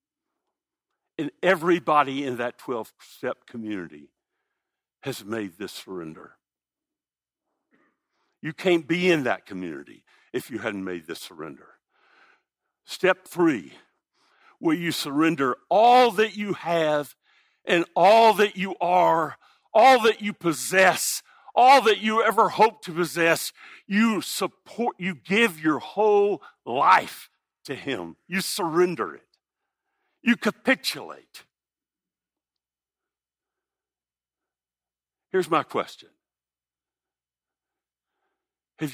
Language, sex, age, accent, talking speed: English, male, 60-79, American, 100 wpm